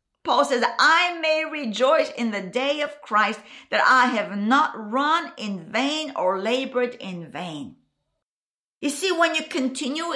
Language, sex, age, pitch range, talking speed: English, female, 50-69, 230-310 Hz, 155 wpm